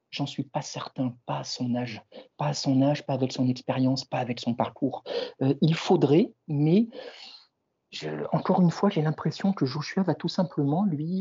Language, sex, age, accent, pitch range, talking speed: French, male, 50-69, French, 125-175 Hz, 195 wpm